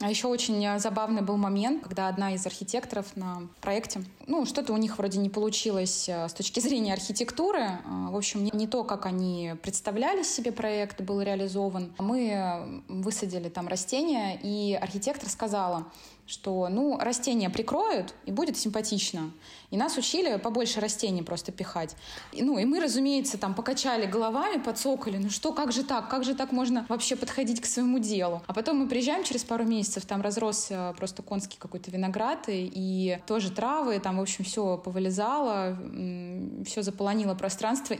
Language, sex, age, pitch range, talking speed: Russian, female, 20-39, 195-250 Hz, 160 wpm